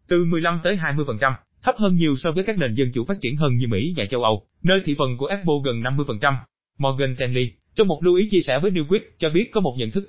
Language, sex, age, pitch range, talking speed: Vietnamese, male, 20-39, 120-180 Hz, 270 wpm